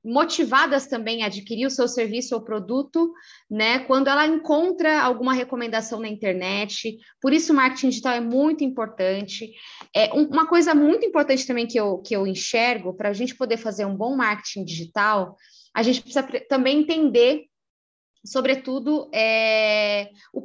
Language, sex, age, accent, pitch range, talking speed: Spanish, female, 20-39, Brazilian, 220-280 Hz, 155 wpm